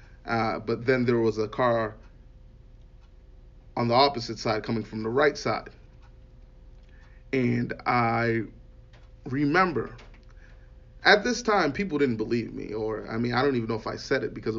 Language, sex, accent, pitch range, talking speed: English, male, American, 110-135 Hz, 155 wpm